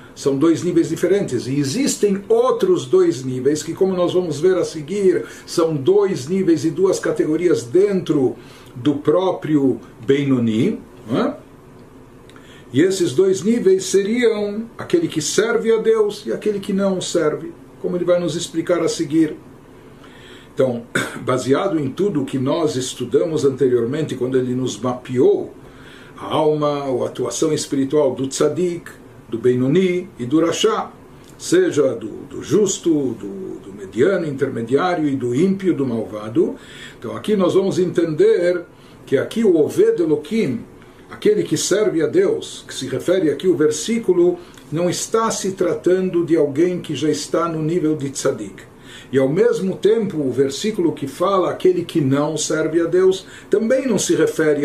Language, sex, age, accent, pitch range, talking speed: Portuguese, male, 60-79, Brazilian, 140-195 Hz, 150 wpm